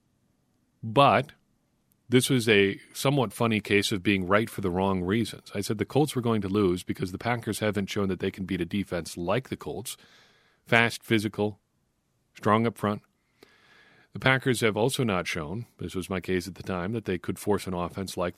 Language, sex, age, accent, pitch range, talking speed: English, male, 40-59, American, 95-115 Hz, 200 wpm